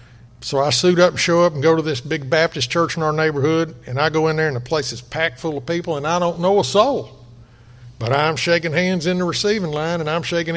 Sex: male